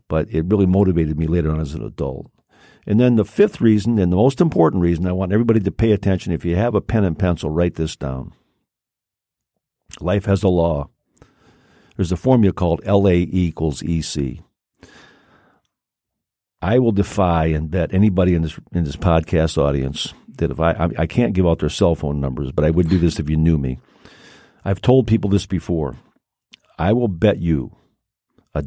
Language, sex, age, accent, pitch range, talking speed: English, male, 50-69, American, 80-100 Hz, 185 wpm